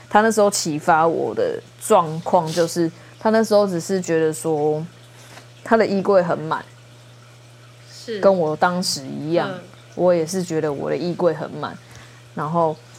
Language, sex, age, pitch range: Chinese, female, 20-39, 125-195 Hz